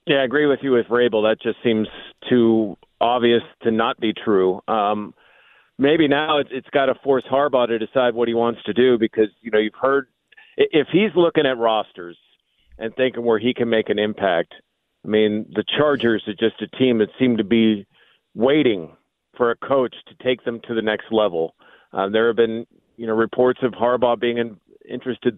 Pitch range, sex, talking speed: 110-135 Hz, male, 205 wpm